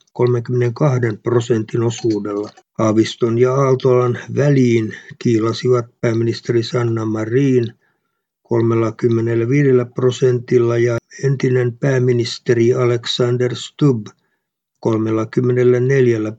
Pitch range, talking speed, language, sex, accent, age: 115-130 Hz, 70 wpm, Finnish, male, native, 60-79